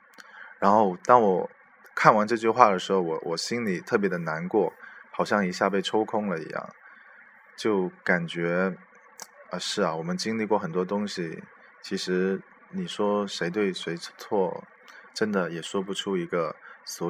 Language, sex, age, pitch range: Chinese, male, 20-39, 85-100 Hz